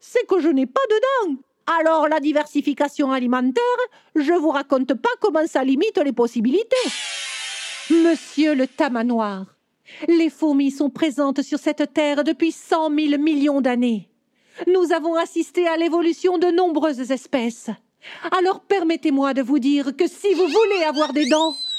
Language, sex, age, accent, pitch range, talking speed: French, female, 50-69, French, 260-360 Hz, 150 wpm